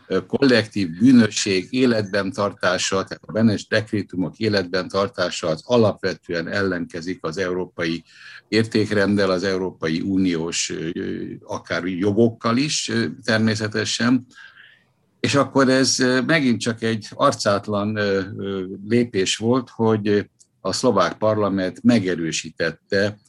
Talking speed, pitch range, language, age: 95 wpm, 95-120 Hz, Hungarian, 60-79